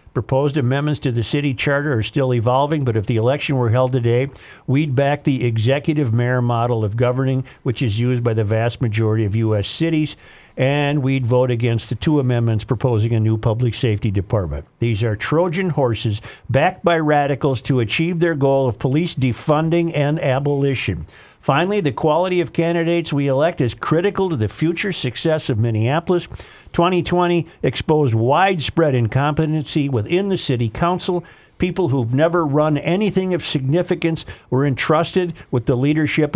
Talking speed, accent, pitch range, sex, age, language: 160 wpm, American, 120-150 Hz, male, 50-69, English